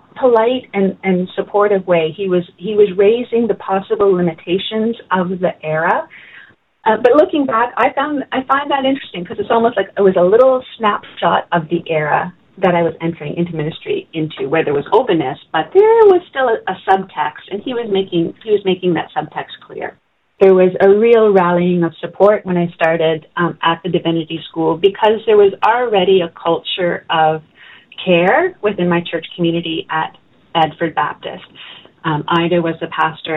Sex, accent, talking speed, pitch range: female, American, 180 wpm, 170-210 Hz